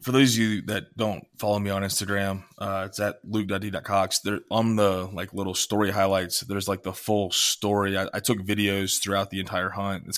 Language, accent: English, American